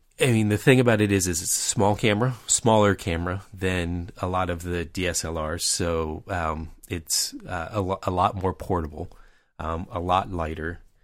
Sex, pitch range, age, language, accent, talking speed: male, 85-100 Hz, 30-49, English, American, 185 wpm